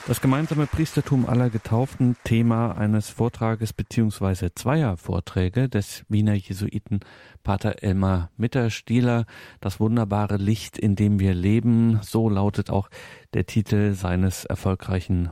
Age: 40-59